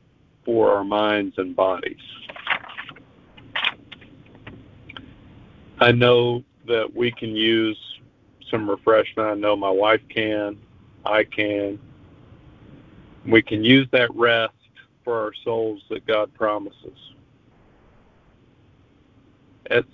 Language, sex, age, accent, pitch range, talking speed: English, male, 50-69, American, 105-125 Hz, 95 wpm